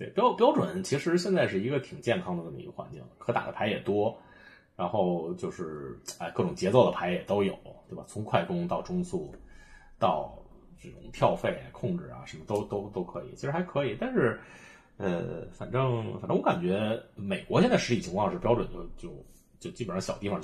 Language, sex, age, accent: Chinese, male, 30-49, native